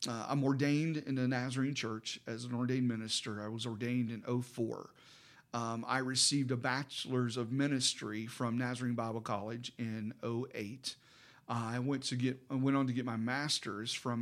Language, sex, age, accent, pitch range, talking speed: English, male, 40-59, American, 115-135 Hz, 175 wpm